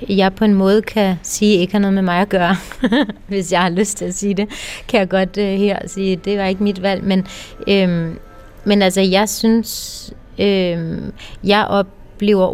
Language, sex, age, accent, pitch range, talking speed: Danish, female, 30-49, native, 185-210 Hz, 185 wpm